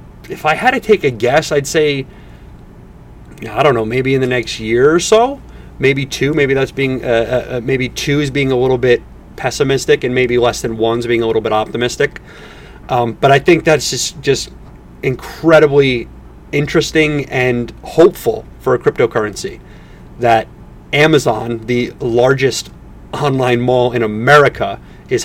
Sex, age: male, 30-49